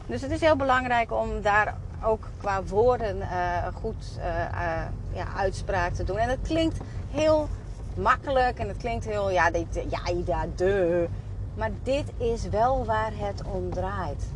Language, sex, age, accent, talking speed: Dutch, female, 30-49, Dutch, 160 wpm